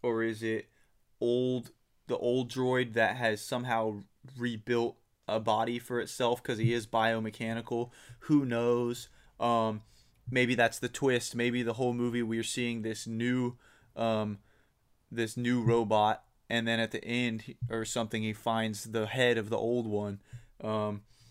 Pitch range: 110-120 Hz